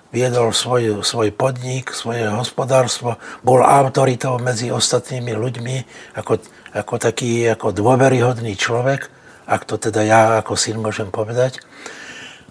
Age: 60-79